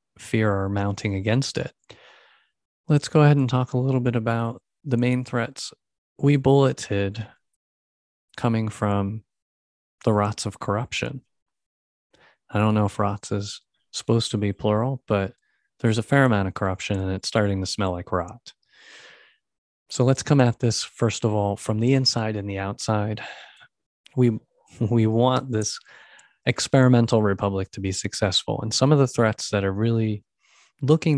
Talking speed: 155 wpm